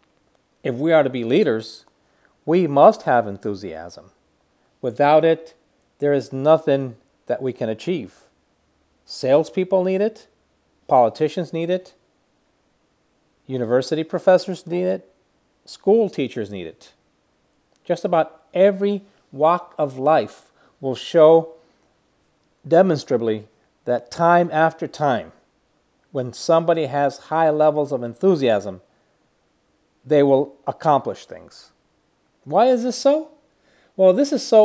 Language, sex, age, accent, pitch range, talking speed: Spanish, male, 40-59, American, 135-185 Hz, 115 wpm